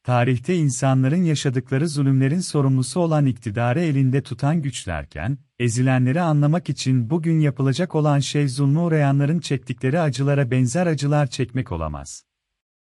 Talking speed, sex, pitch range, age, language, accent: 115 wpm, male, 125-150 Hz, 40-59, Turkish, native